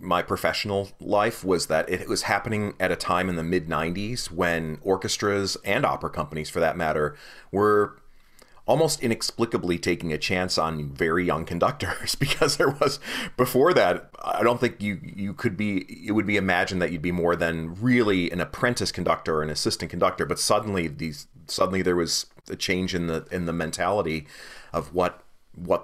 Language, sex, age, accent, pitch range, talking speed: English, male, 30-49, American, 80-100 Hz, 180 wpm